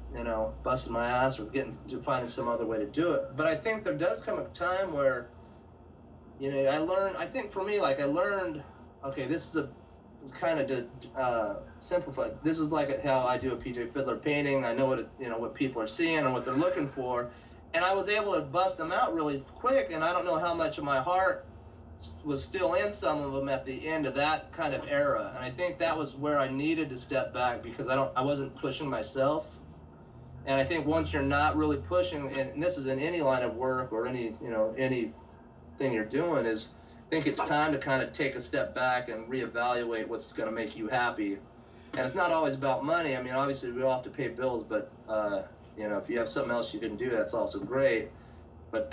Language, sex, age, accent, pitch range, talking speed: English, male, 30-49, American, 115-155 Hz, 240 wpm